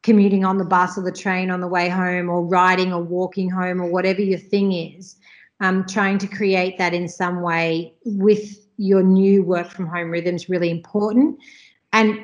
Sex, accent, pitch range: female, Australian, 175-205 Hz